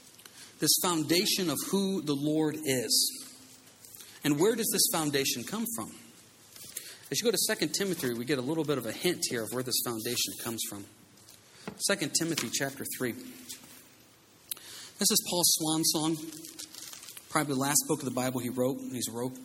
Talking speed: 170 wpm